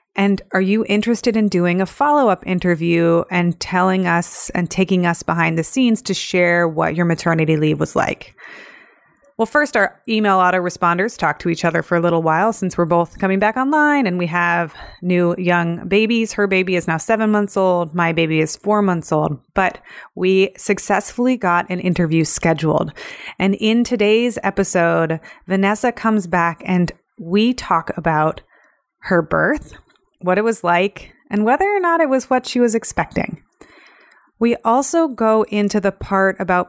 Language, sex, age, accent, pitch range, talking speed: English, female, 30-49, American, 175-225 Hz, 170 wpm